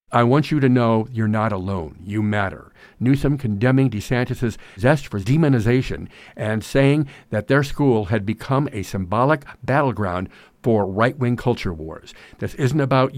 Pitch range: 105-130 Hz